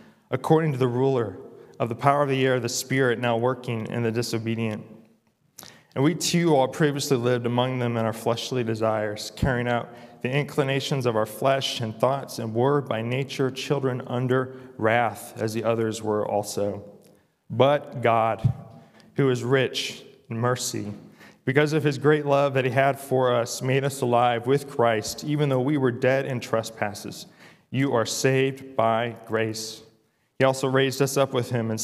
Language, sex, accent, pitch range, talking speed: English, male, American, 115-135 Hz, 175 wpm